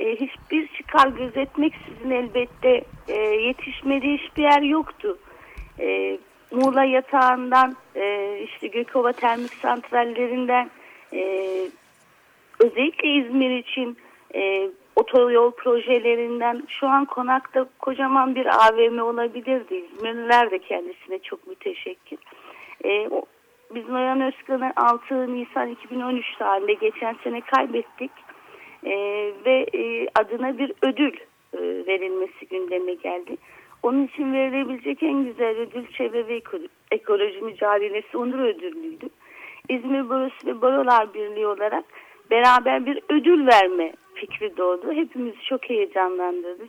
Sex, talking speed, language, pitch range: female, 110 wpm, Turkish, 235-320 Hz